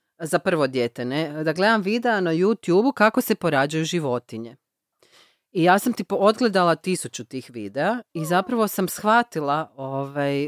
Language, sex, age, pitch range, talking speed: Croatian, female, 30-49, 135-185 Hz, 145 wpm